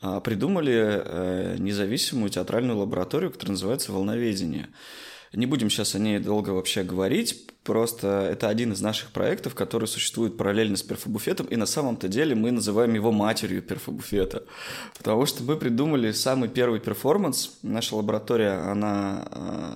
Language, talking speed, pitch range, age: Russian, 135 wpm, 100-120 Hz, 20-39